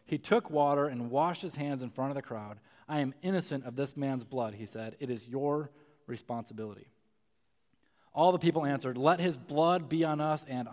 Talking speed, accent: 200 wpm, American